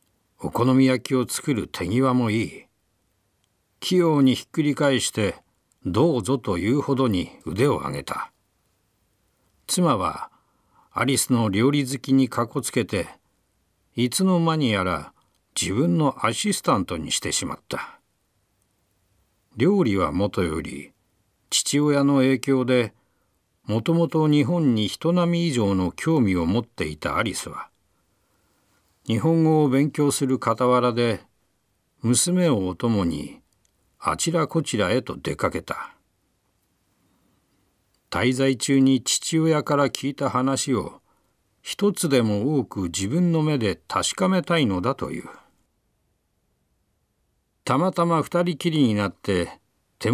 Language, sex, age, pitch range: Japanese, male, 50-69, 105-150 Hz